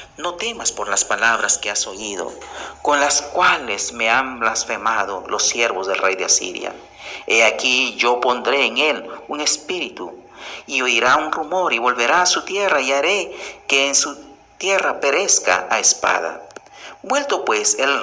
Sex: male